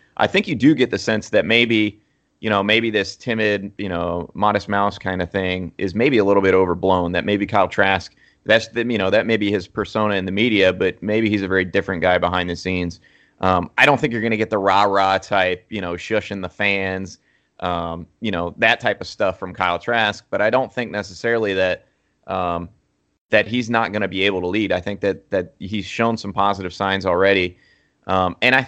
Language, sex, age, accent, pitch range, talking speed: English, male, 30-49, American, 95-110 Hz, 225 wpm